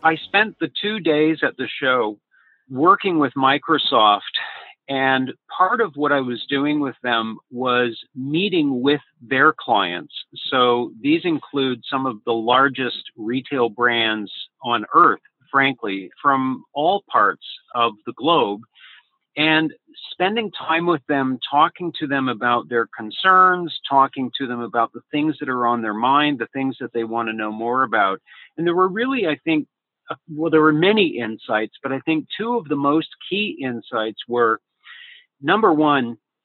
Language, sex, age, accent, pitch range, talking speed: English, male, 50-69, American, 125-160 Hz, 160 wpm